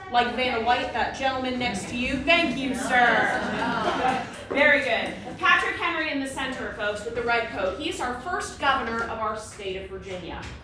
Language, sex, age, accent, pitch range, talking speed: English, female, 30-49, American, 225-280 Hz, 180 wpm